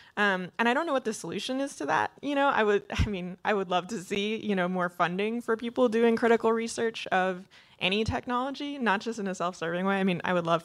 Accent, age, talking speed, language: American, 20-39, 255 wpm, English